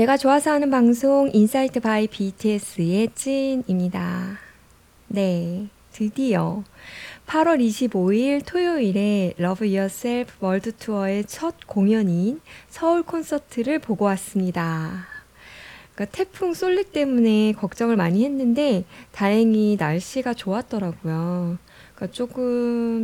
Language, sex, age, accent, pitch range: Korean, female, 20-39, native, 190-265 Hz